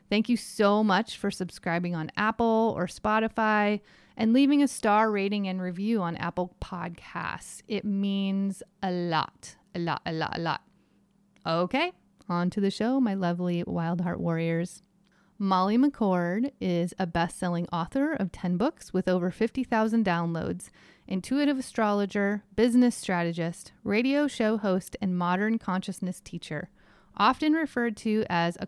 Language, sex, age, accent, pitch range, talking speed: English, female, 30-49, American, 185-225 Hz, 145 wpm